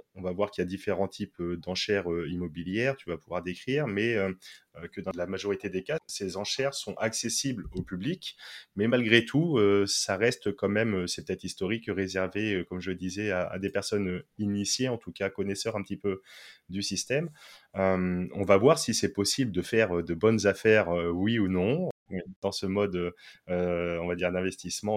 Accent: French